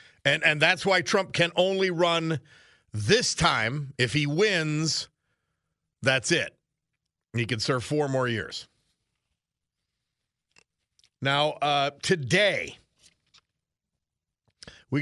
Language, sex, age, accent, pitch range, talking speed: English, male, 50-69, American, 120-170 Hz, 100 wpm